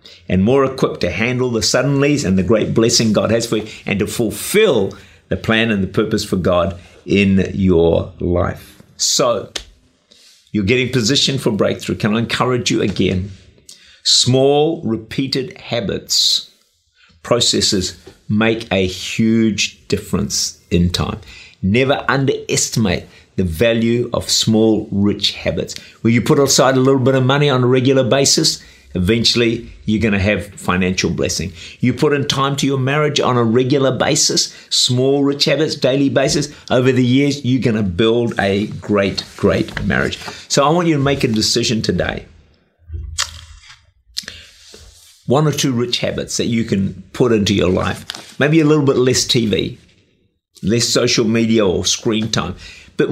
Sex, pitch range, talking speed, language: male, 100-135 Hz, 155 wpm, English